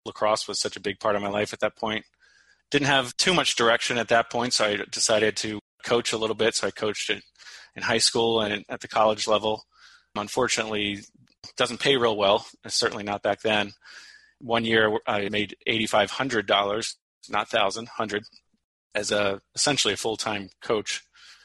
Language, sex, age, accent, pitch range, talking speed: English, male, 30-49, American, 105-115 Hz, 185 wpm